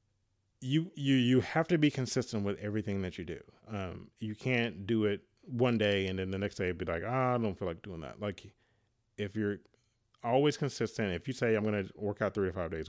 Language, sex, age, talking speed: English, male, 30-49, 235 wpm